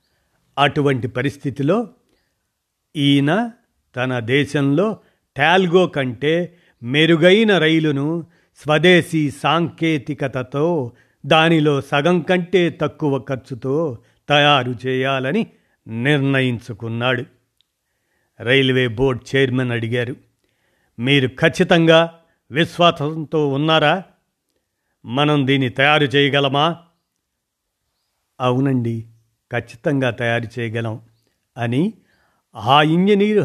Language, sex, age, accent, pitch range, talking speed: Telugu, male, 50-69, native, 125-160 Hz, 70 wpm